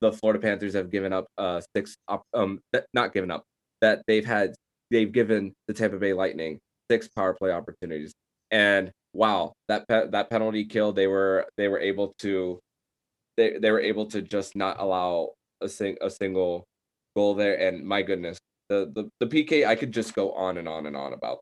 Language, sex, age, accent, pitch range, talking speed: English, male, 20-39, American, 95-110 Hz, 185 wpm